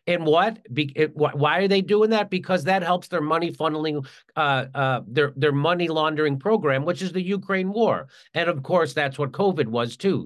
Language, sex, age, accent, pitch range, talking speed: English, male, 50-69, American, 140-190 Hz, 210 wpm